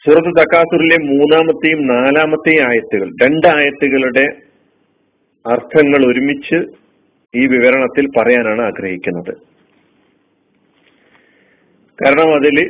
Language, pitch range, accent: Malayalam, 125-155 Hz, native